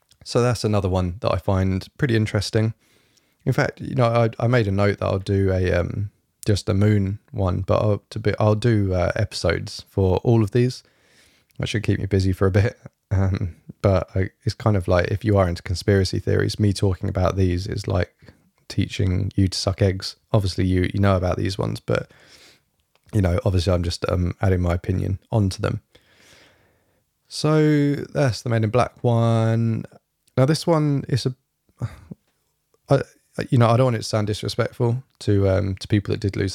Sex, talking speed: male, 195 wpm